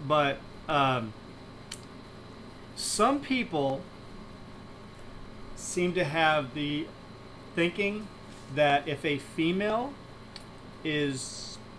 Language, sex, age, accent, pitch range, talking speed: English, male, 40-59, American, 130-150 Hz, 70 wpm